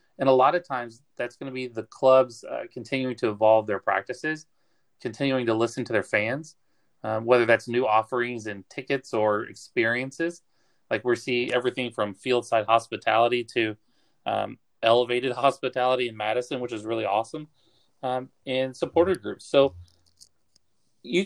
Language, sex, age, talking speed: English, male, 30-49, 155 wpm